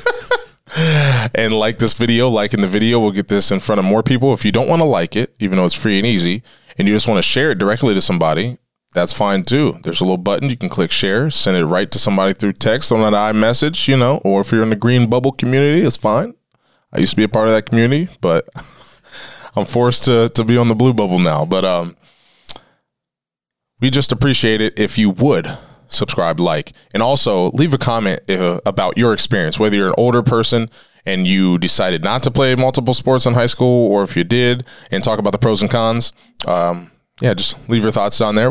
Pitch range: 100-130 Hz